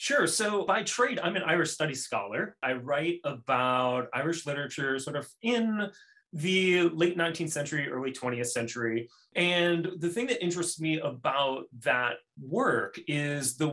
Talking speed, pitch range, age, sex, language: 155 wpm, 130-180 Hz, 30-49, male, English